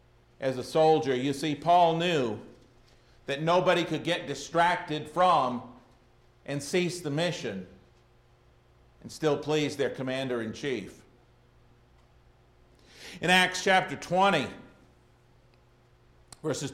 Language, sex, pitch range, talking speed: English, male, 145-205 Hz, 100 wpm